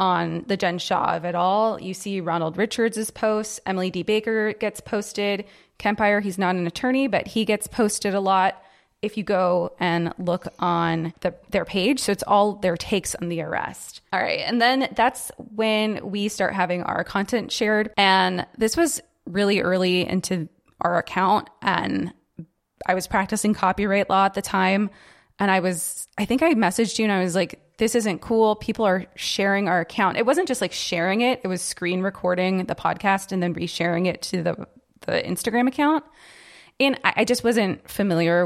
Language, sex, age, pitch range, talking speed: English, female, 20-39, 180-215 Hz, 185 wpm